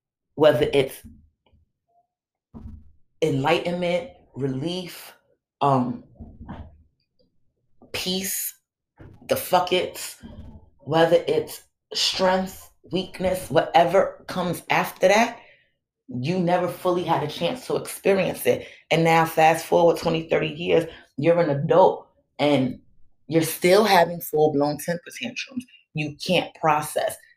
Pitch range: 135-170 Hz